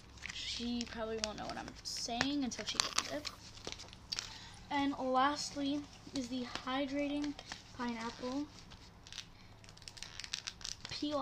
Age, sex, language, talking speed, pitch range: 10-29, female, English, 95 wpm, 180-265 Hz